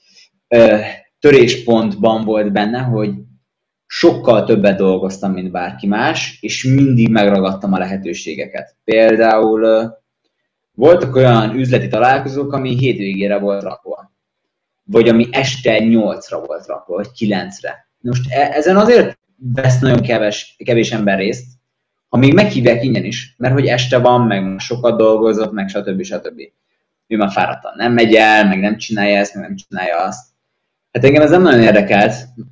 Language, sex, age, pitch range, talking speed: Hungarian, male, 20-39, 105-125 Hz, 140 wpm